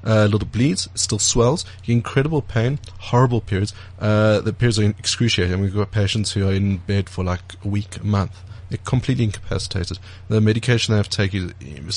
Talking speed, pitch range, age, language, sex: 185 wpm, 95-115 Hz, 30-49, English, male